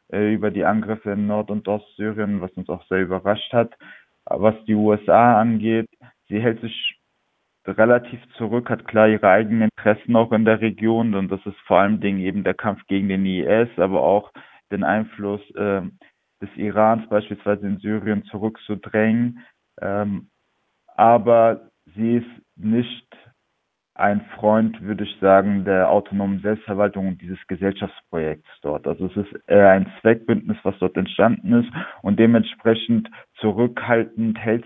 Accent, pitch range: German, 95-110 Hz